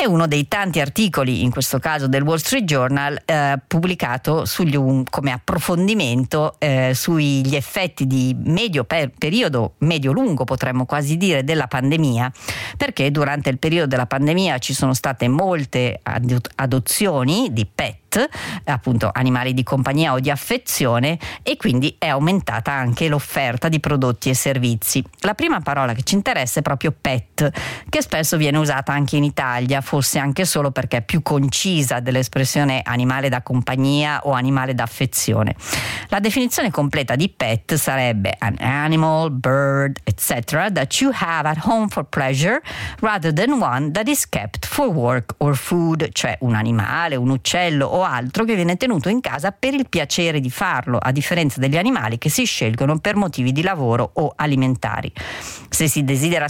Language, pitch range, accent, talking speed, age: Italian, 130-170 Hz, native, 160 wpm, 40-59